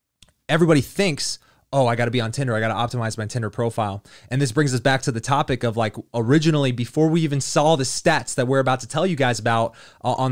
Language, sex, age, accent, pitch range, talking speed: English, male, 20-39, American, 115-145 Hz, 235 wpm